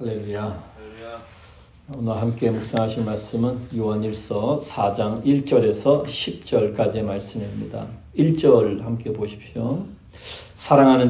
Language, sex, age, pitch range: Korean, male, 40-59, 100-120 Hz